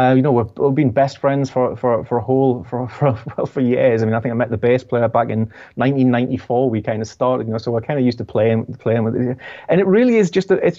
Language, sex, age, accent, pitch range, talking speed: English, male, 30-49, British, 115-140 Hz, 295 wpm